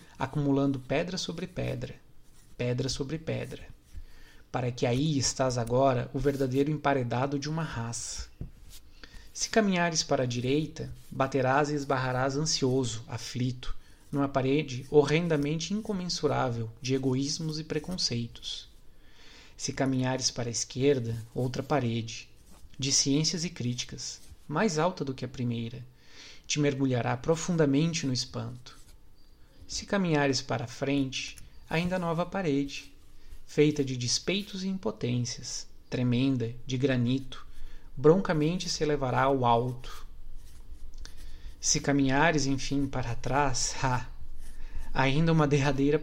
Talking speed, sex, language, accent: 110 wpm, male, Portuguese, Brazilian